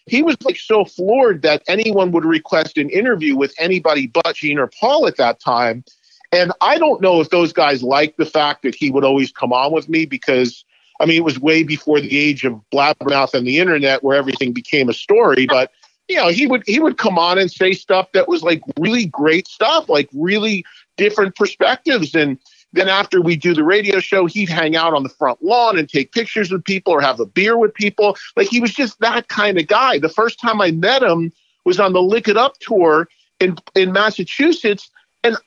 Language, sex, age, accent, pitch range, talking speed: English, male, 40-59, American, 160-240 Hz, 220 wpm